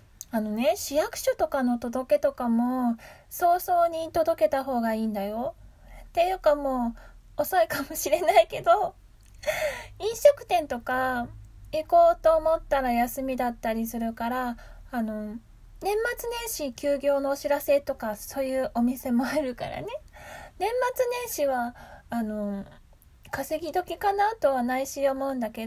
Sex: female